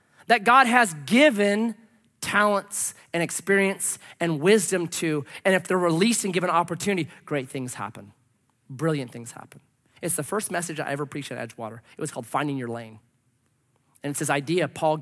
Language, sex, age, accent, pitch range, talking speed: English, male, 30-49, American, 130-210 Hz, 170 wpm